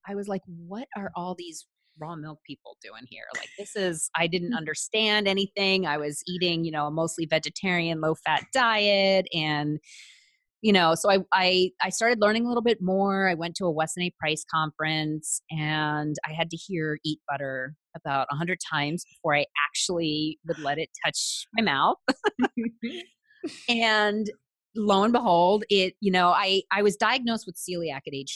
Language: English